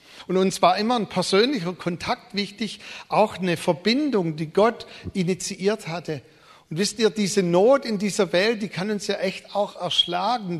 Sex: male